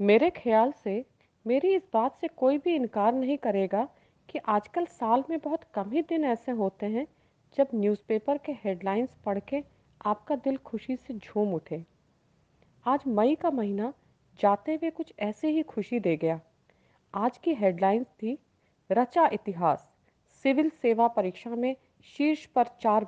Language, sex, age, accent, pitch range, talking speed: Hindi, female, 40-59, native, 200-280 Hz, 155 wpm